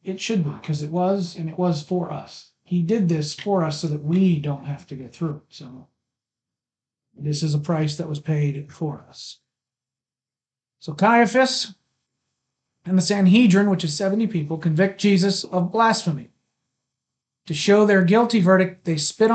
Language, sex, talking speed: English, male, 165 wpm